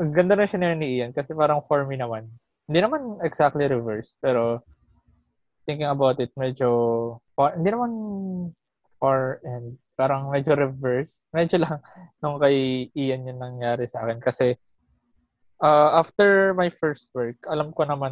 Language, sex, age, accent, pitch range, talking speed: Filipino, male, 20-39, native, 120-145 Hz, 145 wpm